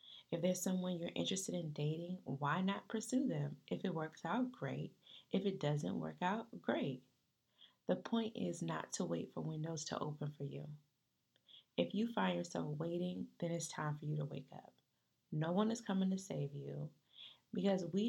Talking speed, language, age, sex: 185 wpm, English, 20-39, female